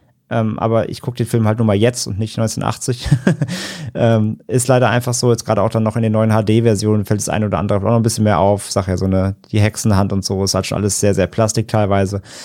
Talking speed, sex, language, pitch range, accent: 260 wpm, male, German, 105-125 Hz, German